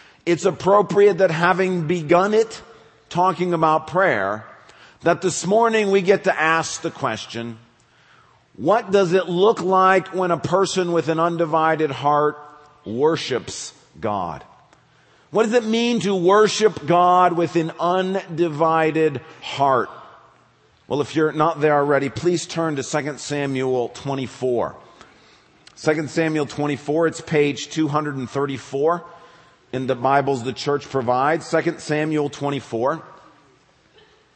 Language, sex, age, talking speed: English, male, 50-69, 120 wpm